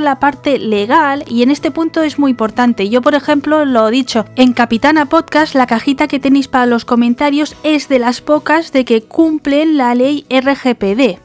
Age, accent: 20-39, Spanish